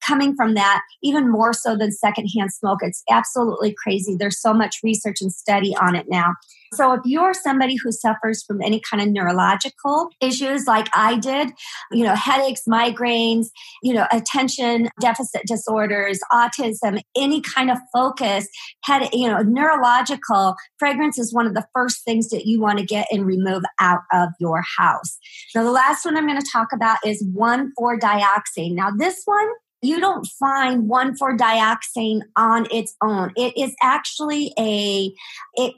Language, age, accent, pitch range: English, 40-59, American, 210-260 Hz